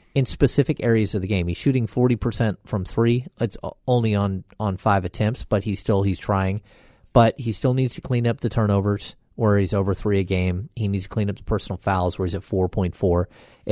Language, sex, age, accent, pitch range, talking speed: English, male, 30-49, American, 95-115 Hz, 215 wpm